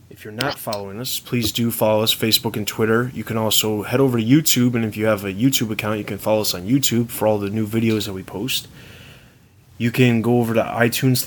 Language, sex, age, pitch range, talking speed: English, male, 20-39, 105-125 Hz, 250 wpm